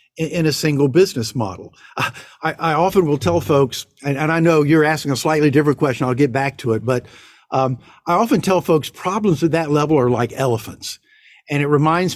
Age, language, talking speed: 50-69, English, 205 wpm